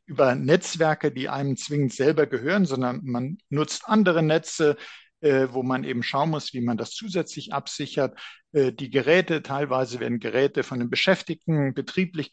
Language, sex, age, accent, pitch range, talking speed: German, male, 50-69, German, 135-175 Hz, 160 wpm